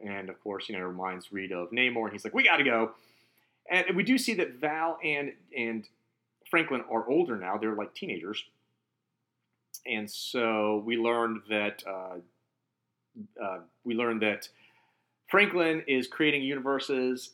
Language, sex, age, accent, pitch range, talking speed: English, male, 40-59, American, 105-130 Hz, 160 wpm